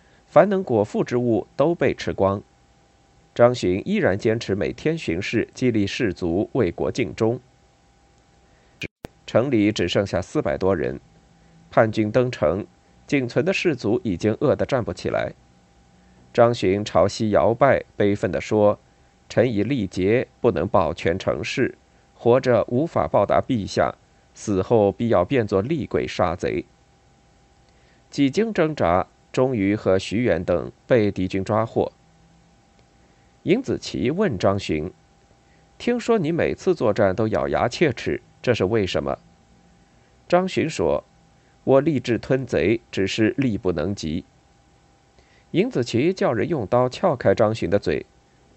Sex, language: male, Chinese